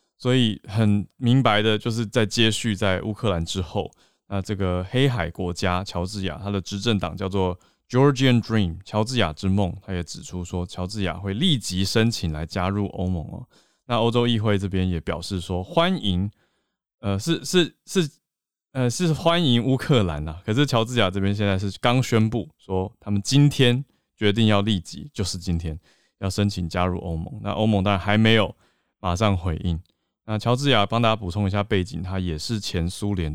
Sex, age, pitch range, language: male, 20-39, 90-110 Hz, Chinese